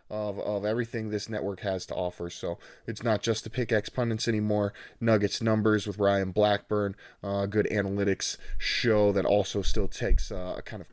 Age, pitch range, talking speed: 20-39, 95-110 Hz, 180 wpm